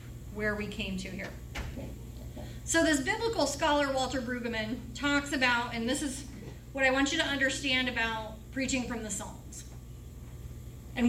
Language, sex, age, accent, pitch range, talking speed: English, female, 30-49, American, 235-305 Hz, 150 wpm